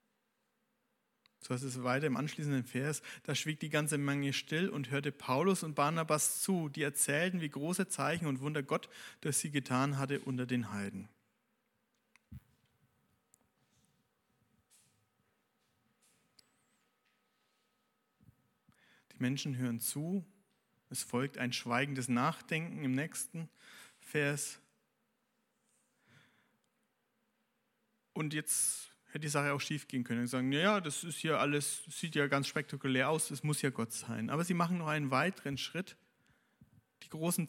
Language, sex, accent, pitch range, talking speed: German, male, German, 130-180 Hz, 130 wpm